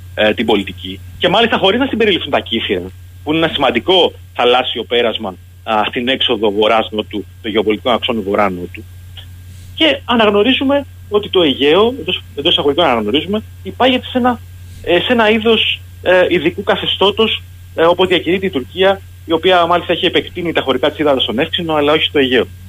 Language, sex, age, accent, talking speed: Greek, male, 30-49, native, 155 wpm